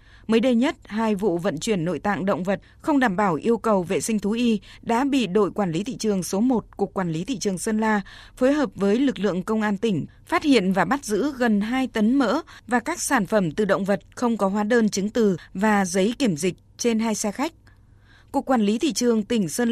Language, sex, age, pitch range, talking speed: Vietnamese, female, 20-39, 195-245 Hz, 245 wpm